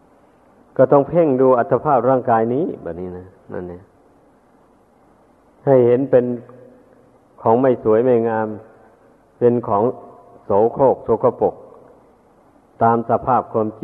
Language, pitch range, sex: Thai, 110-130 Hz, male